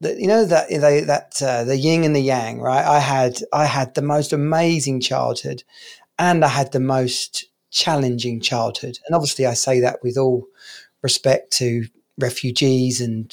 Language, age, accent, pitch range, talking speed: English, 30-49, British, 130-145 Hz, 165 wpm